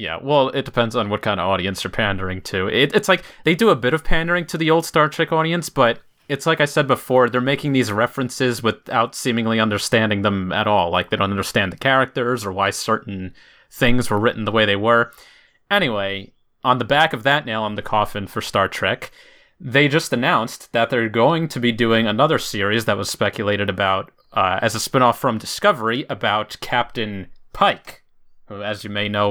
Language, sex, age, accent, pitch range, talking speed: English, male, 30-49, American, 105-135 Hz, 205 wpm